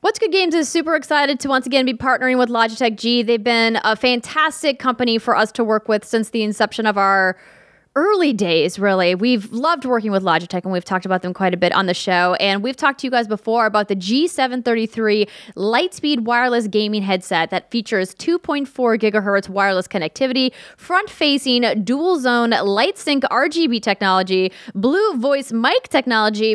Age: 10-29